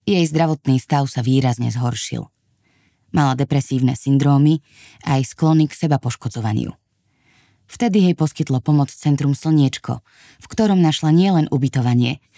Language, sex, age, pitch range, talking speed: Slovak, female, 20-39, 130-160 Hz, 120 wpm